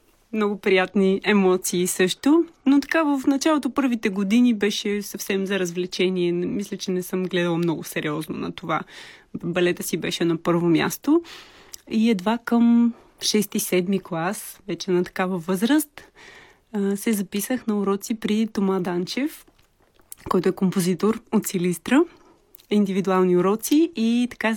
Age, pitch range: 20-39, 180-220 Hz